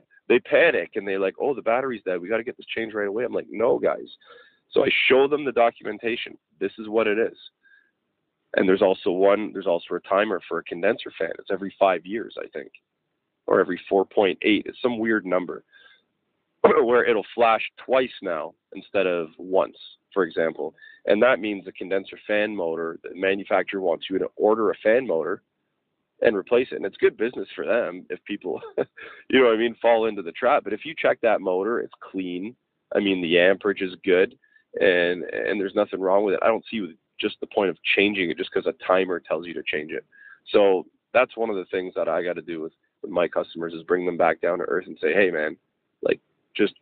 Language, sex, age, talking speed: English, male, 30-49, 215 wpm